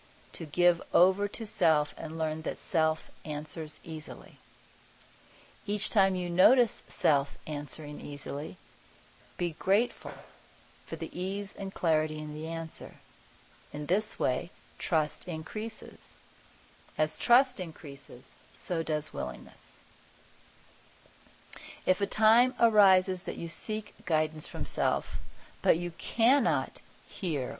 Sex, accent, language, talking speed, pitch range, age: female, American, English, 115 wpm, 155-195 Hz, 40-59